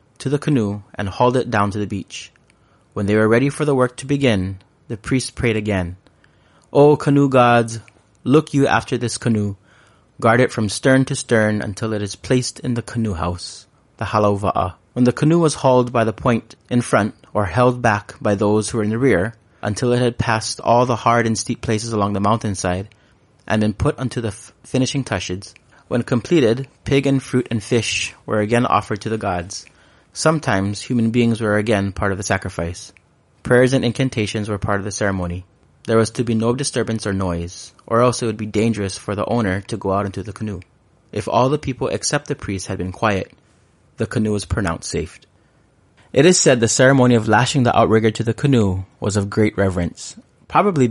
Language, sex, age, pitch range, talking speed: English, male, 30-49, 100-125 Hz, 205 wpm